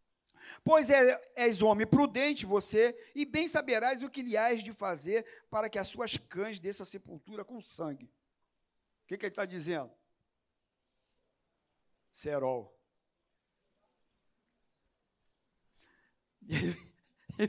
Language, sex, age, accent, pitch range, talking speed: Portuguese, male, 50-69, Brazilian, 195-255 Hz, 105 wpm